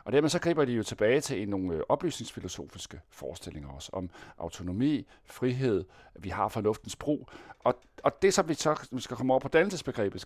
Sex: male